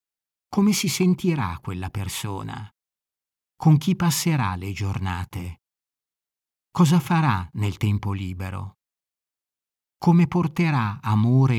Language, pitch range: Italian, 110-140 Hz